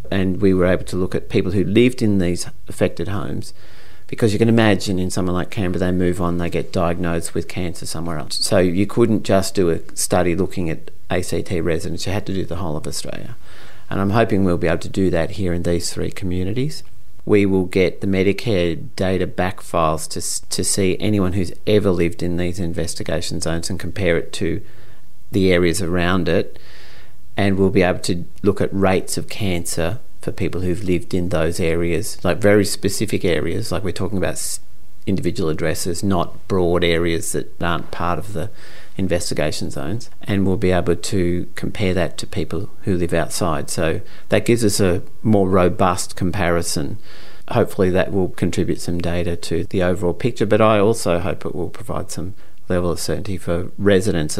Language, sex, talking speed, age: English, male, 190 wpm, 40-59